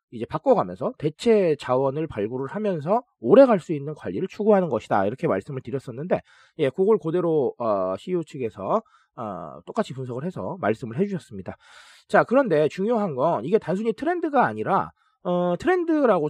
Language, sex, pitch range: Korean, male, 165-235 Hz